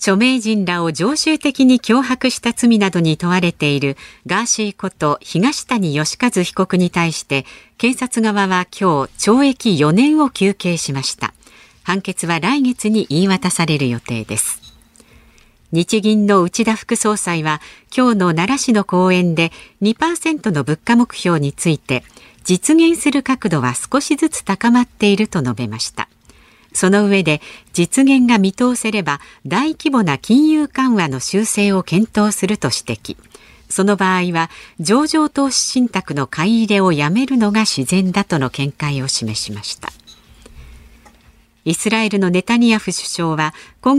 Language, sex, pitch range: Japanese, female, 160-235 Hz